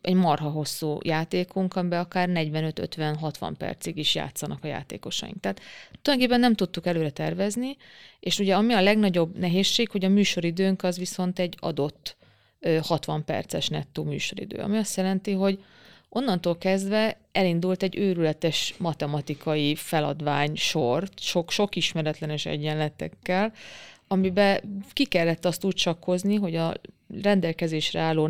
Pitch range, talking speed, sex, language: 155-195 Hz, 125 wpm, female, Hungarian